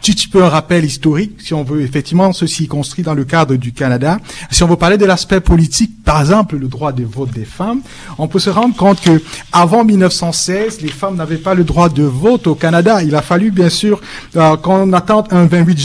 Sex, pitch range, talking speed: male, 145-180 Hz, 230 wpm